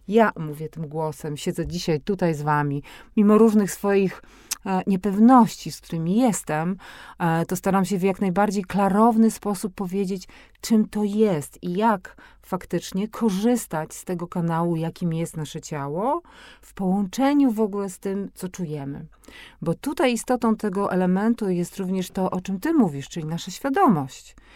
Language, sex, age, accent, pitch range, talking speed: Polish, female, 40-59, native, 160-210 Hz, 150 wpm